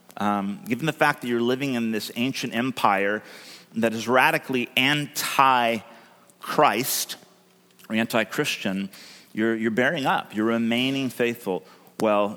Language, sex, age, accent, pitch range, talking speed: English, male, 40-59, American, 105-130 Hz, 130 wpm